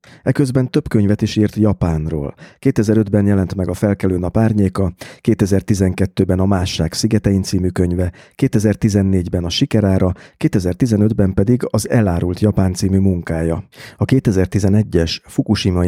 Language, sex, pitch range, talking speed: Hungarian, male, 85-105 Hz, 115 wpm